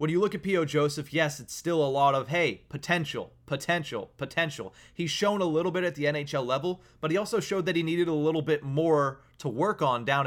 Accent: American